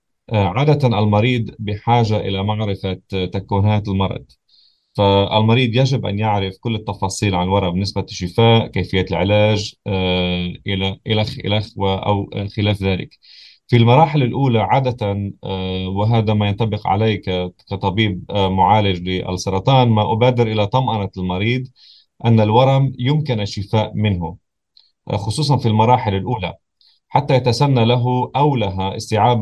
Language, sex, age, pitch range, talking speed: English, male, 30-49, 100-120 Hz, 110 wpm